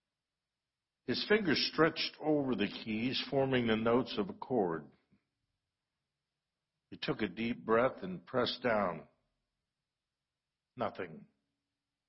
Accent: American